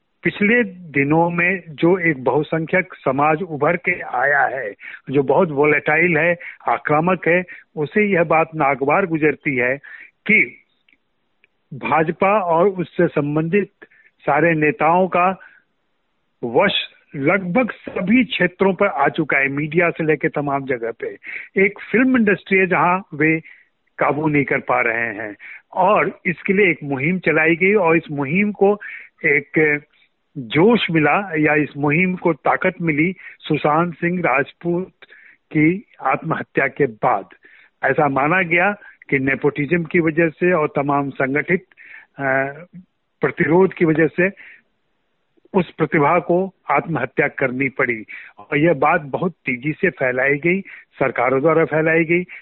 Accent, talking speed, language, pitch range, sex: native, 135 wpm, Hindi, 150-185 Hz, male